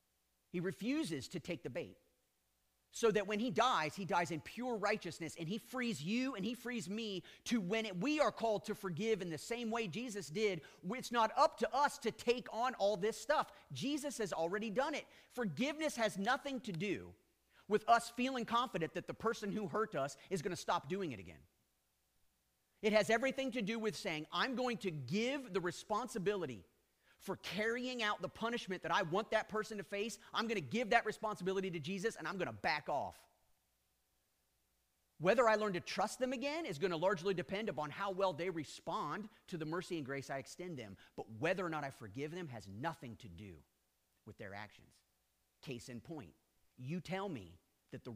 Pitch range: 150-225 Hz